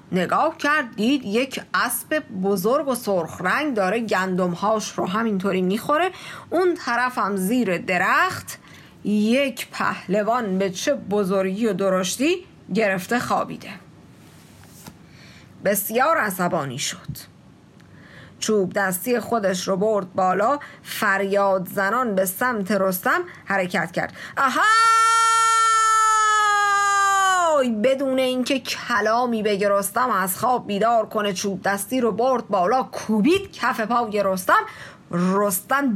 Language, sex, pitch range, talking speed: Persian, female, 195-265 Hz, 105 wpm